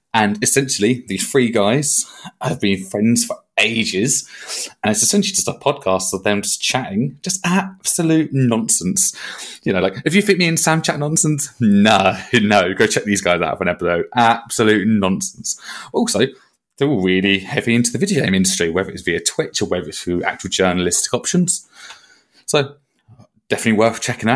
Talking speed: 175 wpm